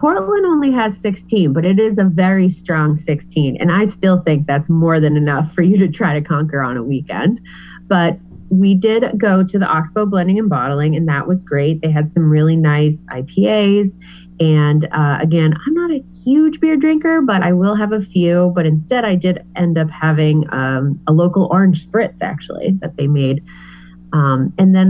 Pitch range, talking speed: 155-205 Hz, 200 wpm